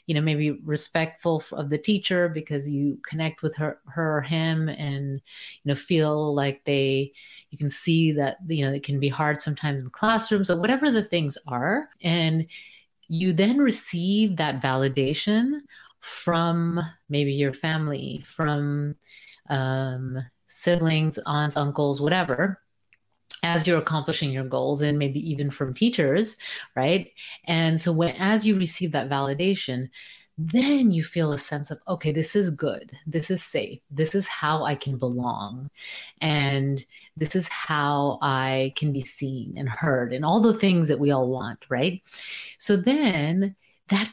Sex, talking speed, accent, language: female, 160 wpm, American, English